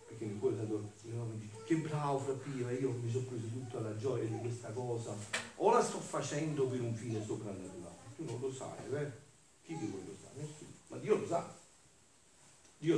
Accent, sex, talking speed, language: native, male, 180 wpm, Italian